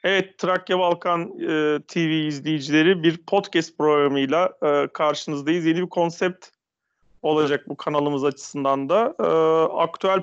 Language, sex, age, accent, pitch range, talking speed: Turkish, male, 40-59, native, 150-205 Hz, 125 wpm